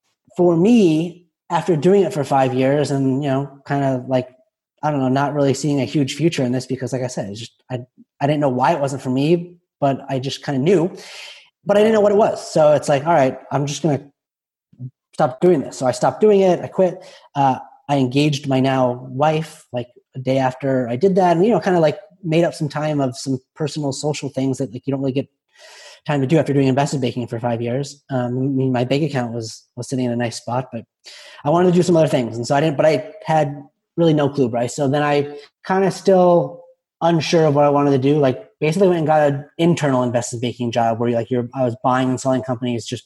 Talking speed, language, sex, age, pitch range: 250 wpm, English, male, 30-49, 130-165 Hz